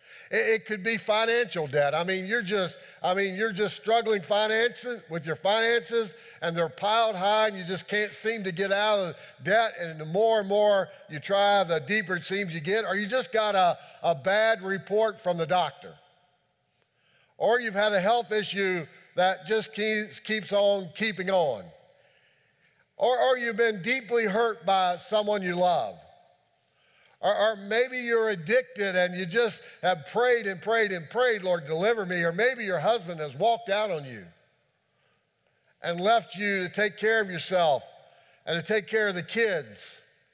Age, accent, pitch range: 50-69, American, 180-225 Hz